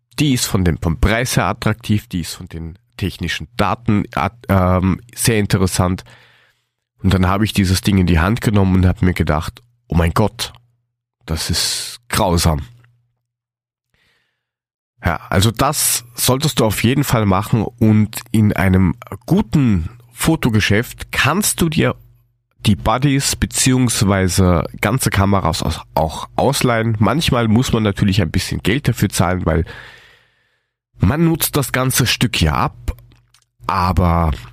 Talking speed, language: 135 wpm, German